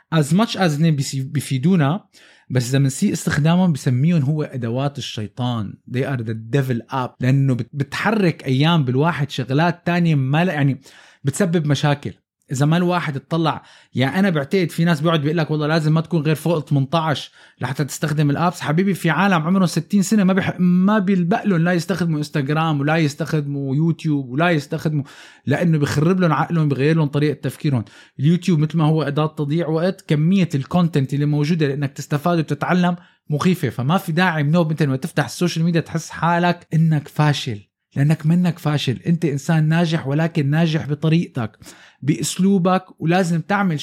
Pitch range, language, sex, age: 140-180 Hz, Arabic, male, 20-39